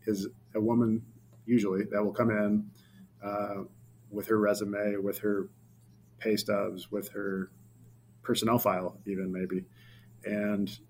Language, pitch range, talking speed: English, 100-115 Hz, 125 wpm